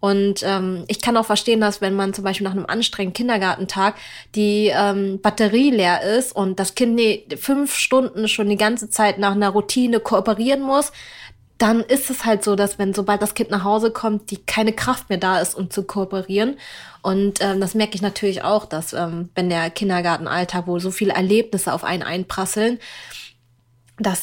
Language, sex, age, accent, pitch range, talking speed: German, female, 20-39, German, 185-215 Hz, 190 wpm